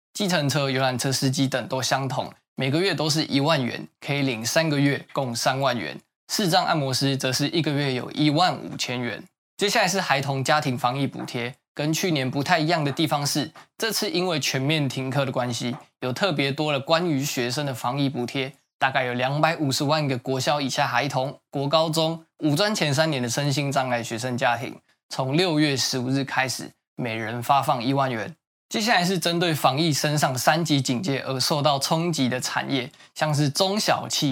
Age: 20-39